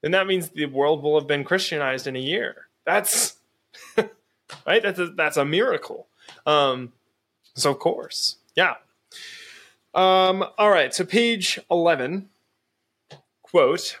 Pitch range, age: 135-185 Hz, 20-39